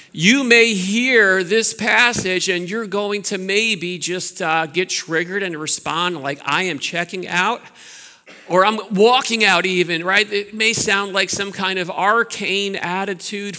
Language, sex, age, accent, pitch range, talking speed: English, male, 50-69, American, 150-200 Hz, 160 wpm